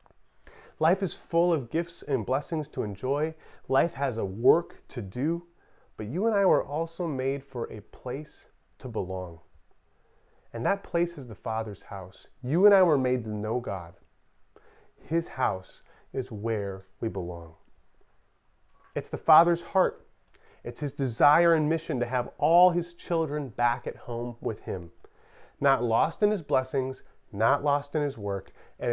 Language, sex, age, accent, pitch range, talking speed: English, male, 30-49, American, 120-170 Hz, 160 wpm